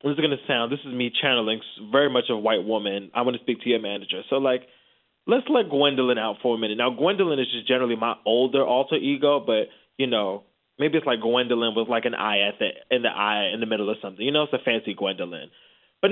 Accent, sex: American, male